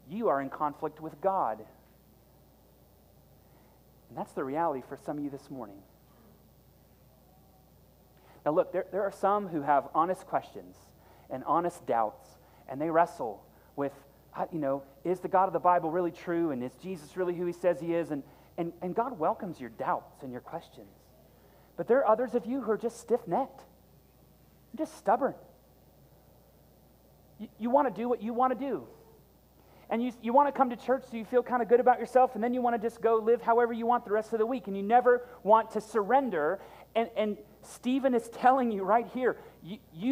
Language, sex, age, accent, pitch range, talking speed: English, male, 30-49, American, 175-250 Hz, 195 wpm